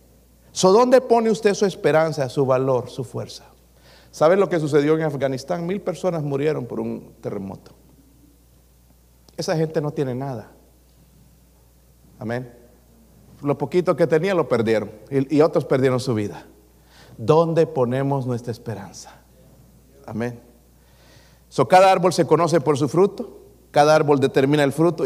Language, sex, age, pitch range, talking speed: Spanish, male, 50-69, 130-195 Hz, 140 wpm